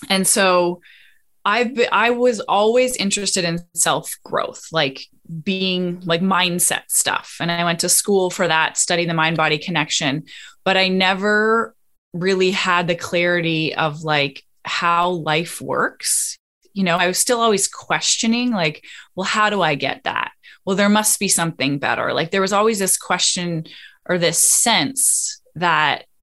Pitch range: 165-200 Hz